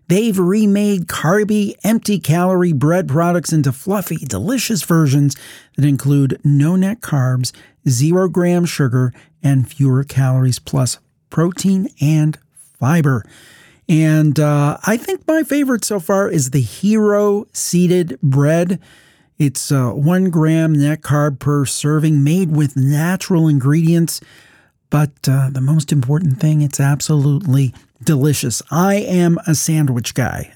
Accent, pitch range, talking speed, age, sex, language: American, 140-180 Hz, 125 wpm, 40-59, male, English